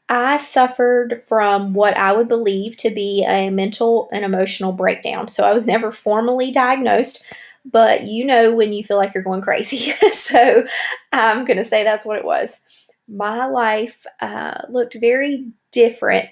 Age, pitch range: 20-39, 190-235 Hz